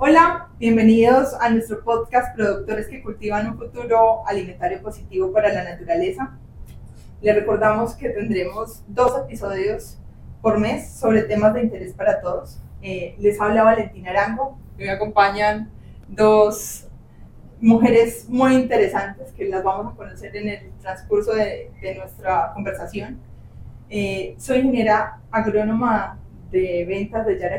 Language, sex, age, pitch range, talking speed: Spanish, female, 20-39, 200-240 Hz, 135 wpm